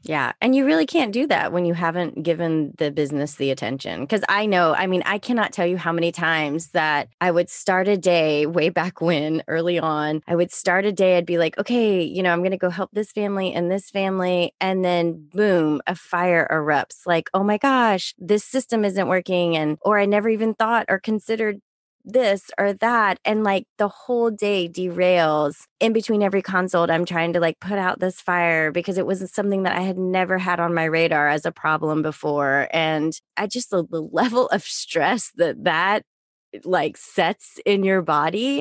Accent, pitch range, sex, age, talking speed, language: American, 165-210 Hz, female, 20-39, 205 wpm, English